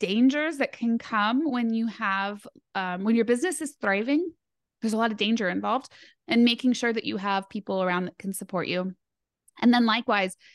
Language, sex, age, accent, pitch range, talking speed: English, female, 20-39, American, 185-230 Hz, 195 wpm